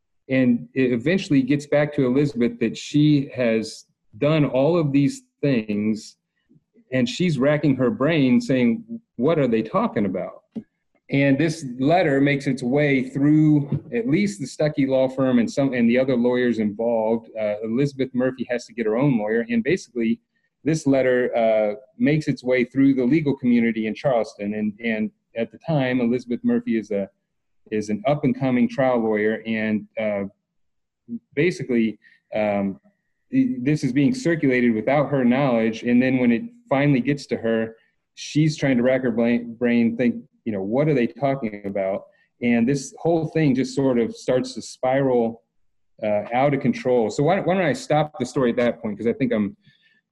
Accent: American